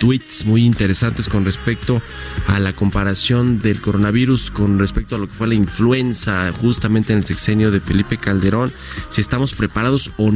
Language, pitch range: Spanish, 105-125 Hz